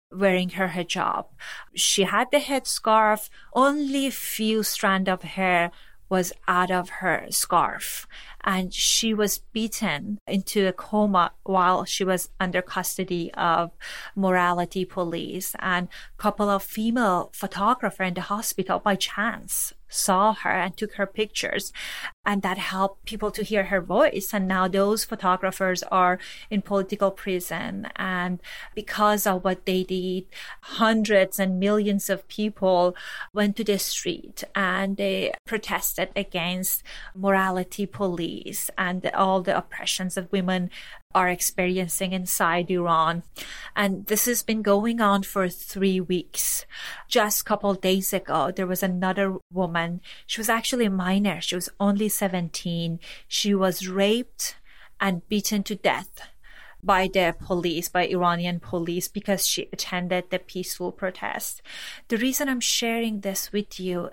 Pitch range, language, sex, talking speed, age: 185-210 Hz, English, female, 140 wpm, 30-49